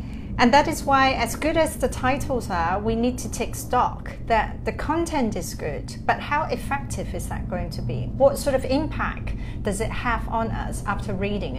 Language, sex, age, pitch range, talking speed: English, female, 40-59, 195-255 Hz, 200 wpm